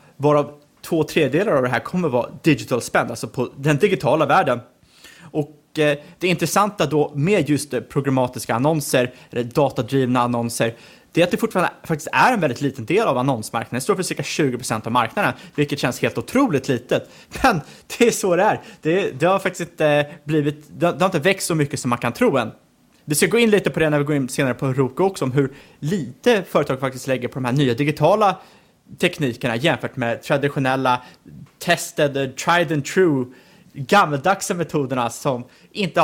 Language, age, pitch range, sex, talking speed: Swedish, 30-49, 130-170 Hz, male, 185 wpm